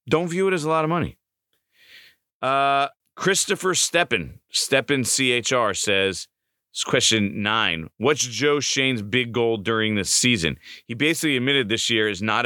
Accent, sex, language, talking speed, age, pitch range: American, male, English, 155 wpm, 30-49, 125-170 Hz